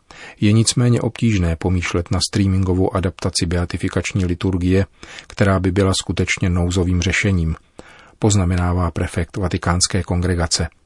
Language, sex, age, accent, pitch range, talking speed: Czech, male, 40-59, native, 90-100 Hz, 105 wpm